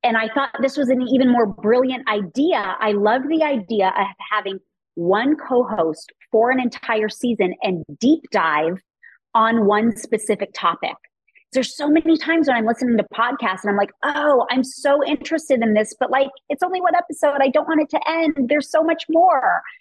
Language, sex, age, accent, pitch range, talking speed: English, female, 30-49, American, 220-300 Hz, 190 wpm